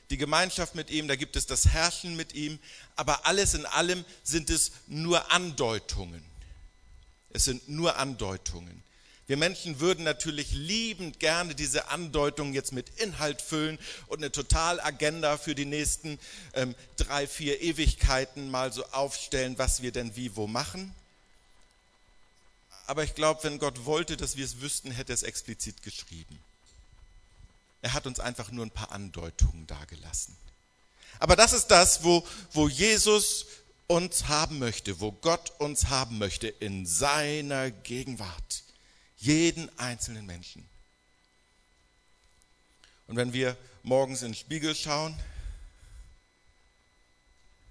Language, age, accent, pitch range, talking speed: German, 50-69, German, 95-150 Hz, 135 wpm